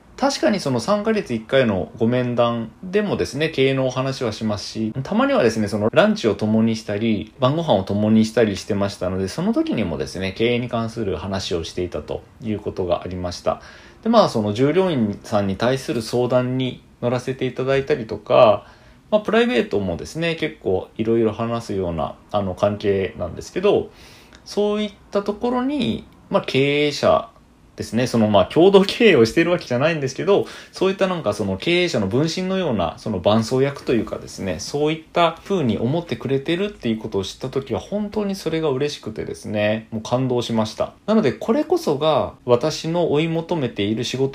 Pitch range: 110-170 Hz